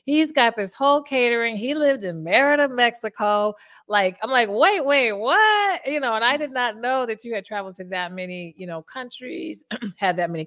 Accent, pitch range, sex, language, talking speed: American, 170-235 Hz, female, English, 205 wpm